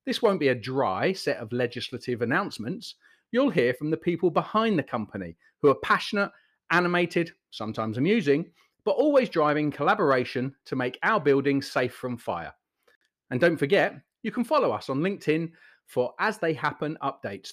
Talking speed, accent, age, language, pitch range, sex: 165 wpm, British, 40-59, English, 125-195 Hz, male